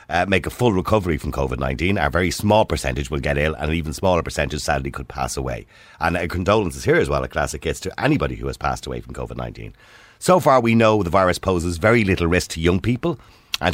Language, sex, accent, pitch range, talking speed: English, male, Irish, 75-110 Hz, 230 wpm